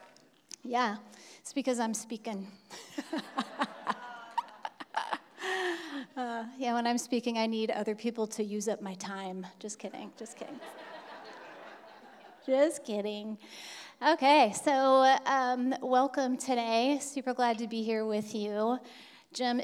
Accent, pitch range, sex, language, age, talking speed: American, 215-280 Hz, female, English, 30-49, 115 wpm